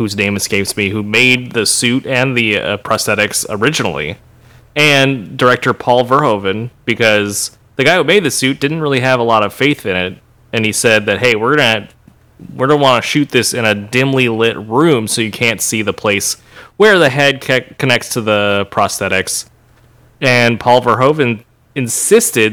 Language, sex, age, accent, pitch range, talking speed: English, male, 30-49, American, 110-130 Hz, 185 wpm